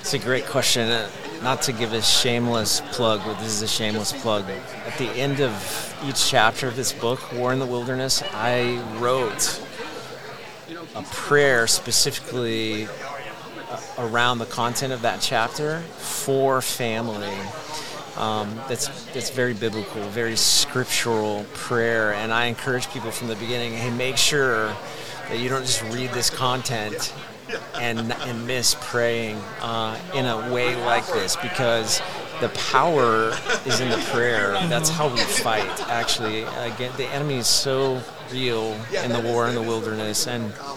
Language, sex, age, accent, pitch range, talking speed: English, male, 30-49, American, 110-130 Hz, 150 wpm